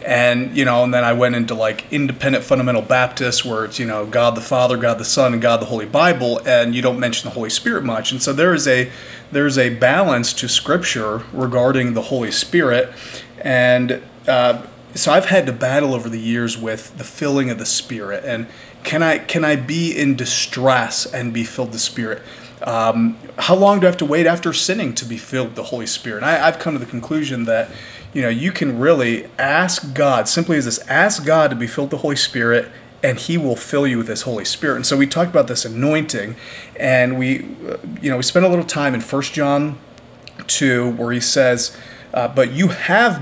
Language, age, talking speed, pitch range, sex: English, 30-49, 220 wpm, 120-145 Hz, male